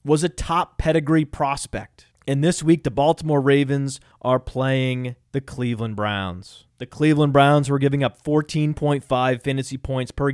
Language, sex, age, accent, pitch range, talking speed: English, male, 30-49, American, 130-165 Hz, 150 wpm